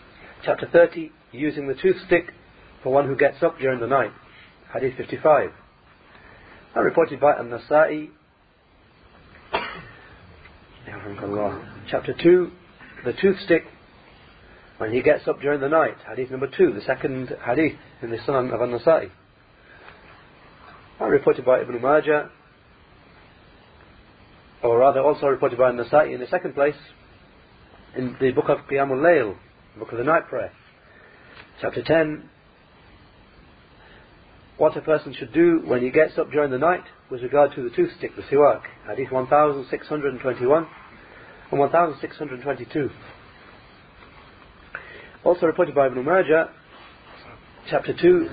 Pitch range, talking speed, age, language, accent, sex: 125-160 Hz, 125 wpm, 40-59, English, British, male